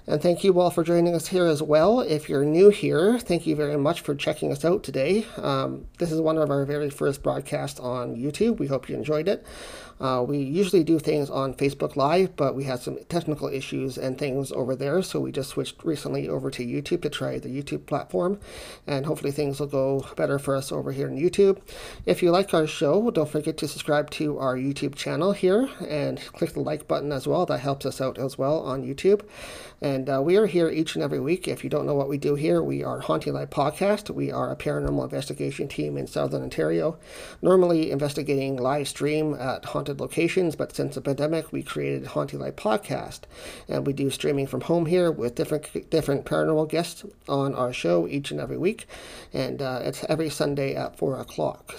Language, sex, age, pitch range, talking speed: English, male, 40-59, 130-165 Hz, 215 wpm